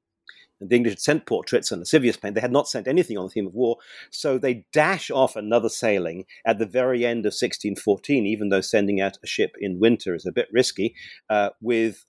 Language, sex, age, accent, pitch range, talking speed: English, male, 40-59, British, 100-120 Hz, 225 wpm